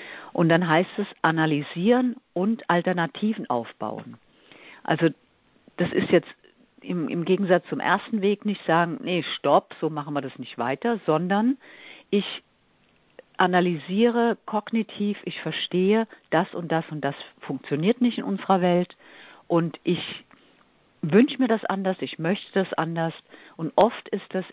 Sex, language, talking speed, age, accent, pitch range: female, German, 140 wpm, 50-69, German, 145-190 Hz